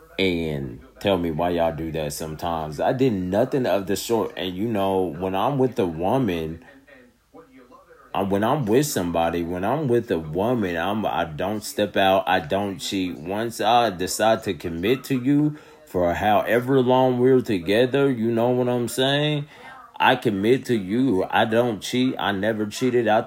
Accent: American